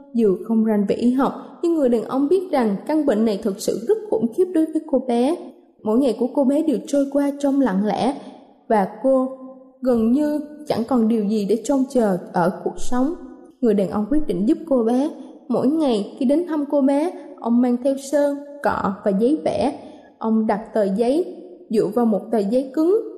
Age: 20-39